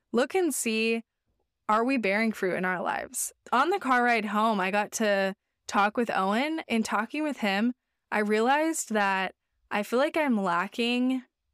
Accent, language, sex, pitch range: American, English, female, 200-250 Hz